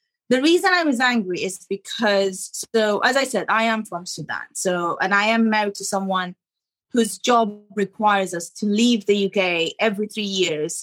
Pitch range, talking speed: 195-260 Hz, 185 wpm